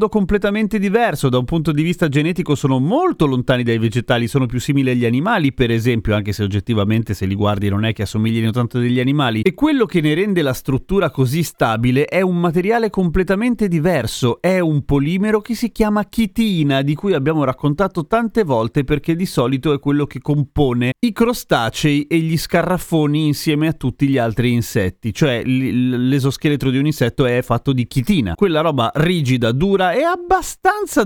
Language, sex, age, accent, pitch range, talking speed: Italian, male, 30-49, native, 120-175 Hz, 185 wpm